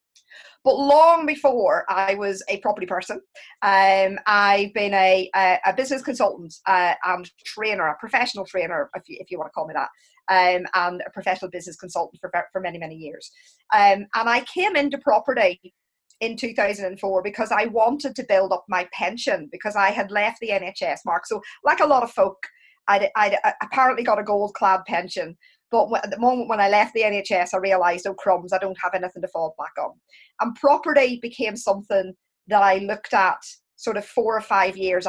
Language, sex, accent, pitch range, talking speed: English, female, British, 185-230 Hz, 195 wpm